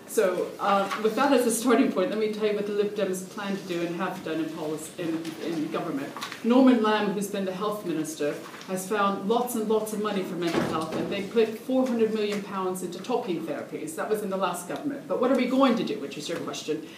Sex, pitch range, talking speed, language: female, 190-235 Hz, 240 wpm, English